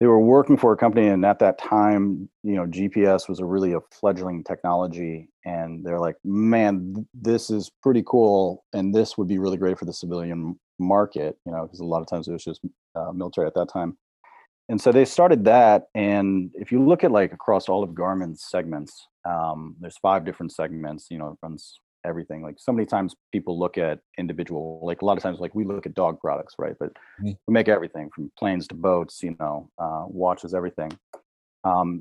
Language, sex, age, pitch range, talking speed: English, male, 30-49, 85-100 Hz, 210 wpm